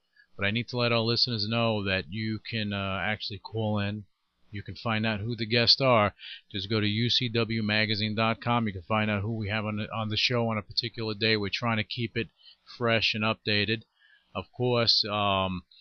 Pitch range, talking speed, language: 100-120 Hz, 200 wpm, English